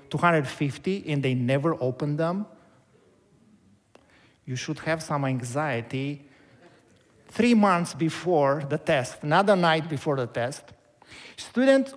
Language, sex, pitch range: English, male, 145-175 Hz